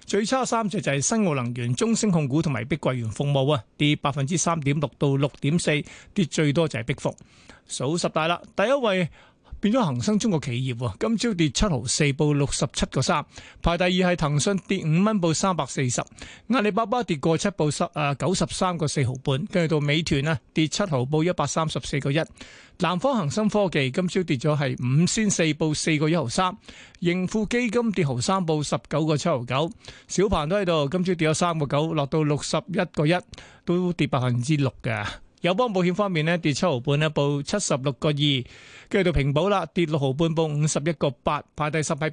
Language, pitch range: Chinese, 145-185 Hz